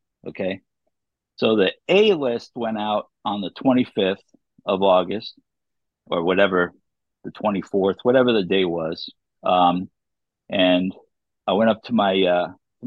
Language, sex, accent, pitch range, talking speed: English, male, American, 95-120 Hz, 135 wpm